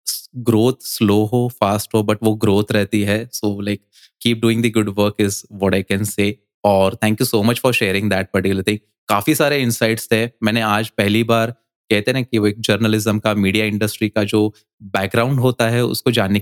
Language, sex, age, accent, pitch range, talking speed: Hindi, male, 20-39, native, 105-120 Hz, 205 wpm